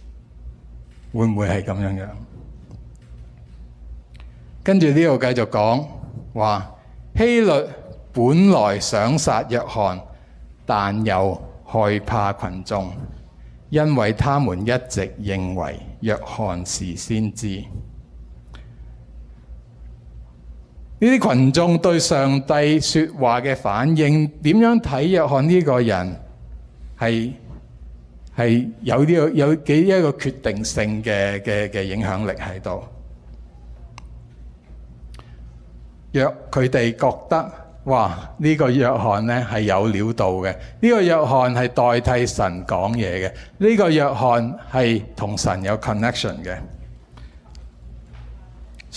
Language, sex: Chinese, male